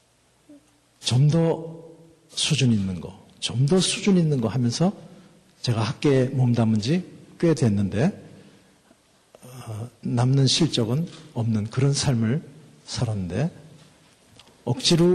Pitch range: 120-160 Hz